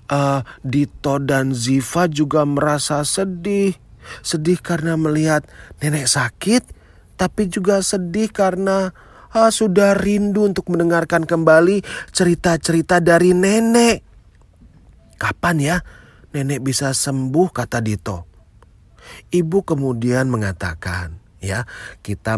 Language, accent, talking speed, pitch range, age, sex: Indonesian, native, 100 wpm, 115-180 Hz, 30-49, male